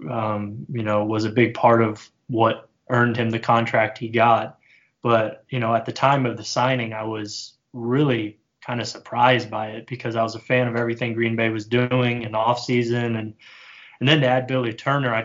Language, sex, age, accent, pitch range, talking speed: English, male, 20-39, American, 115-125 Hz, 215 wpm